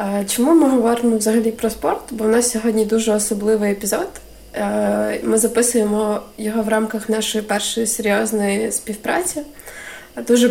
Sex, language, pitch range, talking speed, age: female, Ukrainian, 205-225 Hz, 130 wpm, 20-39